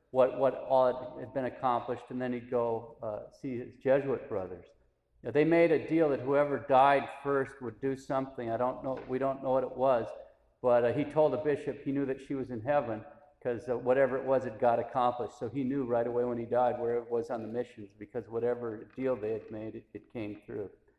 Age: 50-69